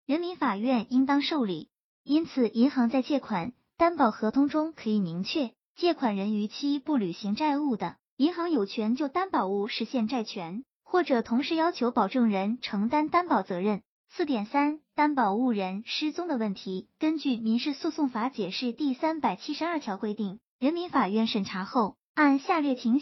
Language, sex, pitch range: Chinese, male, 215-290 Hz